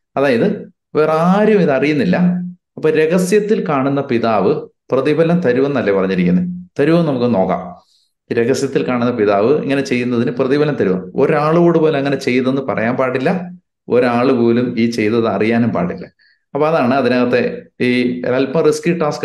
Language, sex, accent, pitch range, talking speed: Malayalam, male, native, 115-155 Hz, 125 wpm